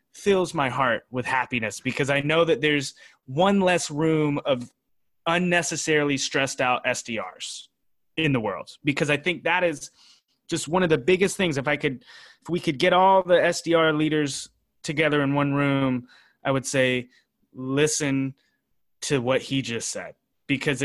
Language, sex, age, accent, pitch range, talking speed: English, male, 20-39, American, 135-165 Hz, 165 wpm